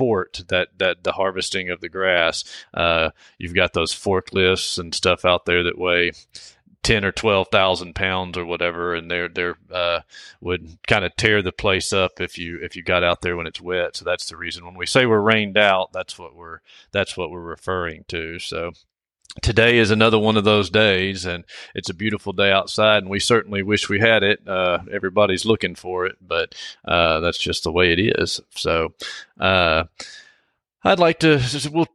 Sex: male